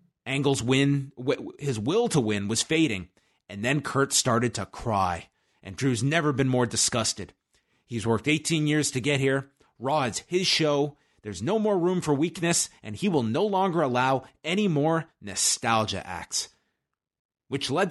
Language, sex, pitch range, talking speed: English, male, 110-145 Hz, 160 wpm